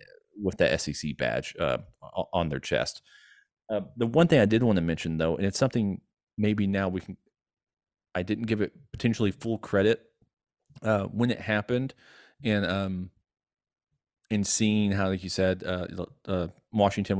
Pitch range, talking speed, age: 90-115 Hz, 165 wpm, 30-49